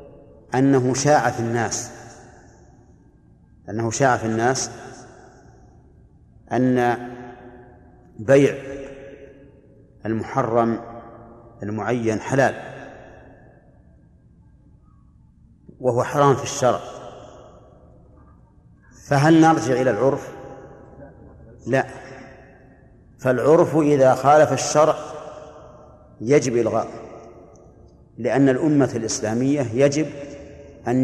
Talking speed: 65 wpm